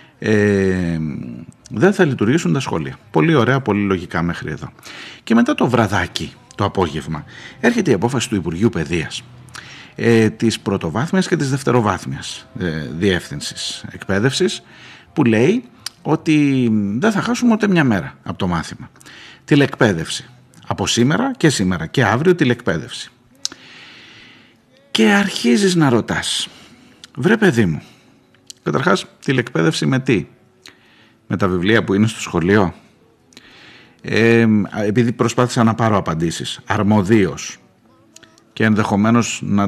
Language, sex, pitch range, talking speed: Greek, male, 90-125 Hz, 120 wpm